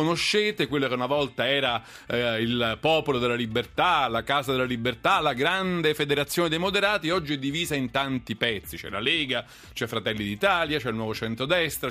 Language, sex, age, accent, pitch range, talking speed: Italian, male, 40-59, native, 130-185 Hz, 180 wpm